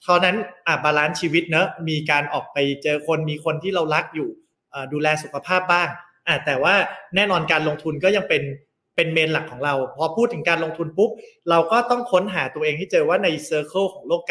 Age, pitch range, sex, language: 20-39, 150-185 Hz, male, Thai